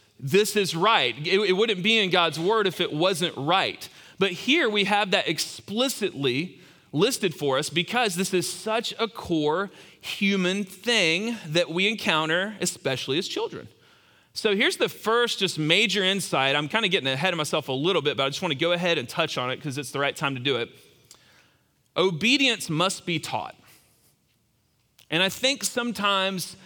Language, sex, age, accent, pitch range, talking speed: English, male, 40-59, American, 150-200 Hz, 180 wpm